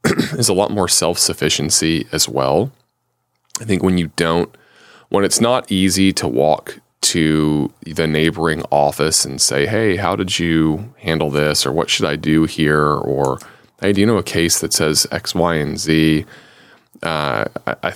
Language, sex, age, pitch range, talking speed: English, male, 30-49, 75-85 Hz, 170 wpm